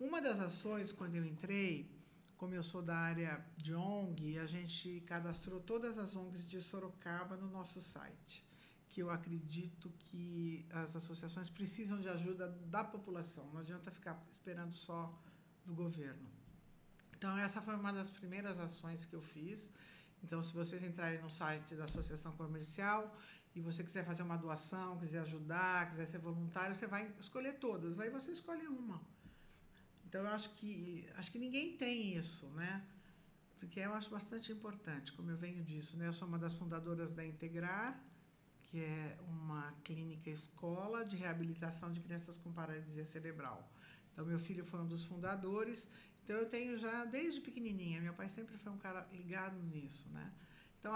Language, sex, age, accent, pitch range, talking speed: Portuguese, male, 50-69, Brazilian, 165-210 Hz, 165 wpm